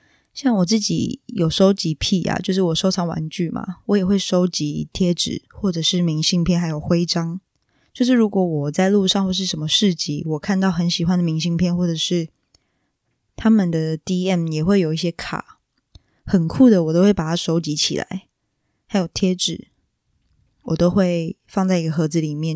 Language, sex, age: Chinese, female, 10-29